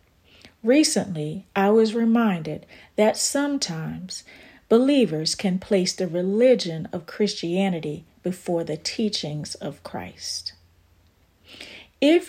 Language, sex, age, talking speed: English, female, 40-59, 95 wpm